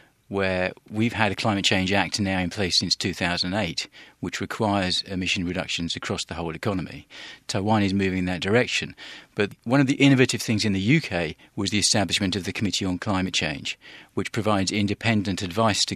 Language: English